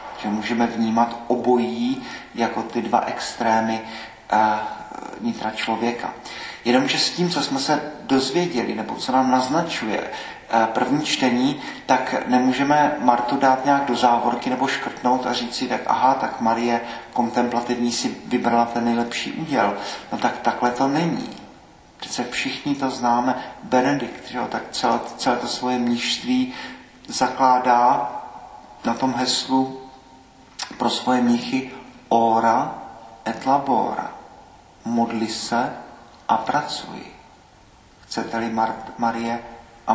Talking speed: 125 wpm